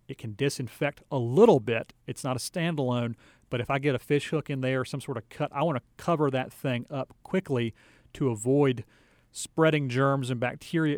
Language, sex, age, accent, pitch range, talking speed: English, male, 40-59, American, 120-140 Hz, 210 wpm